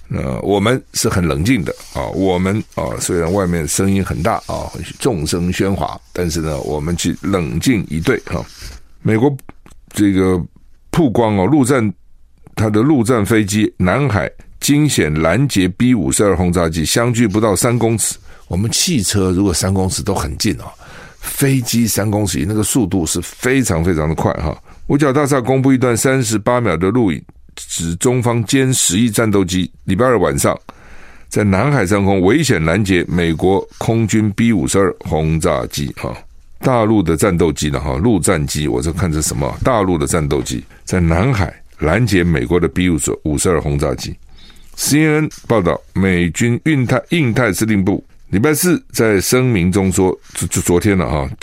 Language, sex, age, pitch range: Chinese, male, 50-69, 85-120 Hz